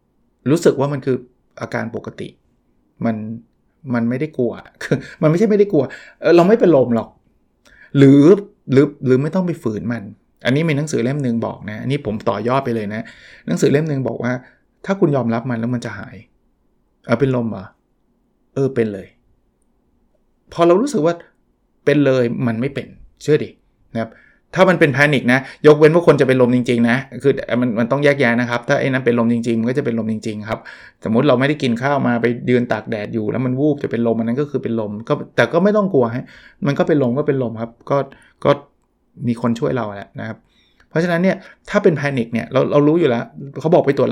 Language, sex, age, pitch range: Thai, male, 20-39, 115-145 Hz